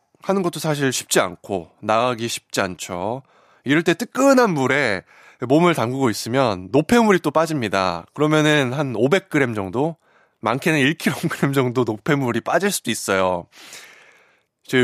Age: 20-39